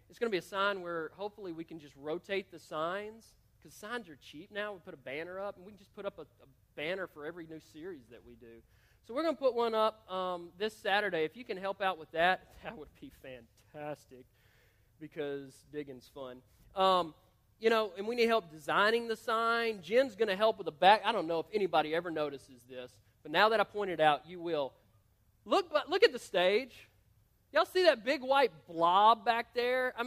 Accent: American